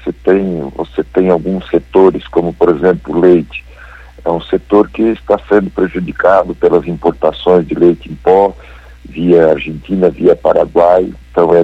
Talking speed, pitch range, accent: 155 wpm, 80-95 Hz, Brazilian